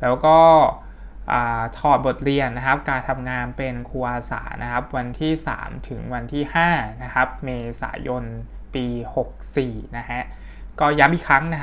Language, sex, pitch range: Thai, male, 125-155 Hz